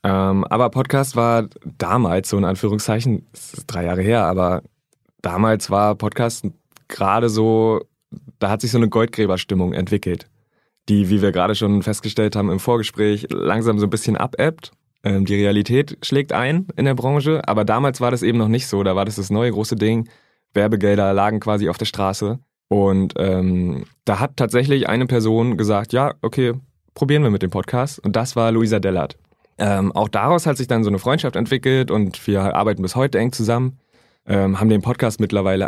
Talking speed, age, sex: 180 wpm, 20-39, male